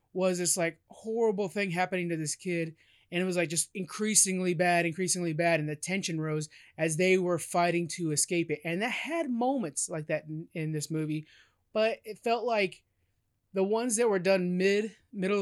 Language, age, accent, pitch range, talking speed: English, 20-39, American, 155-190 Hz, 195 wpm